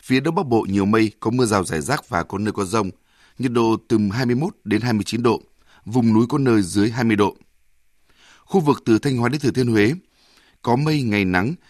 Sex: male